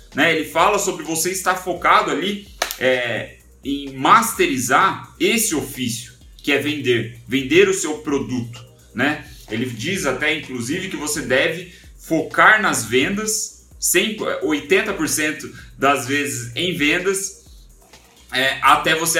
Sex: male